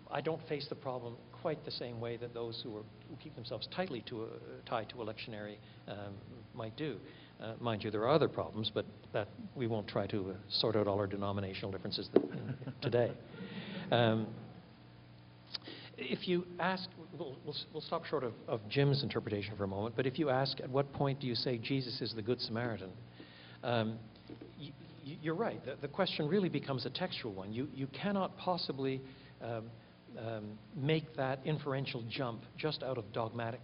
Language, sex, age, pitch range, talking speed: English, male, 60-79, 110-145 Hz, 175 wpm